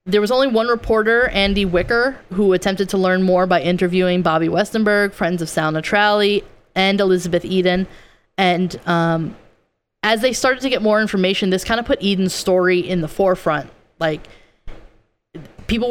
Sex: female